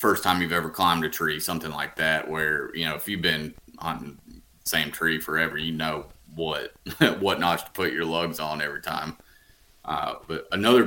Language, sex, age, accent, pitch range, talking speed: English, male, 30-49, American, 80-90 Hz, 195 wpm